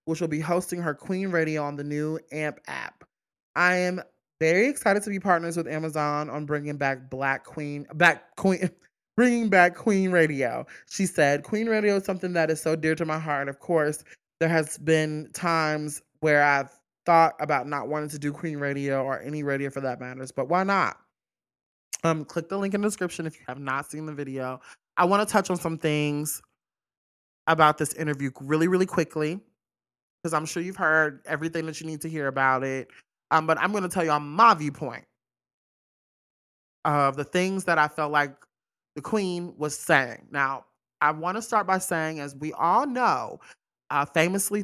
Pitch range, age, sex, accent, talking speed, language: 145-175 Hz, 20-39, male, American, 195 wpm, English